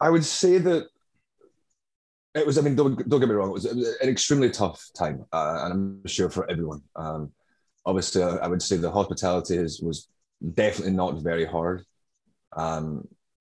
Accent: British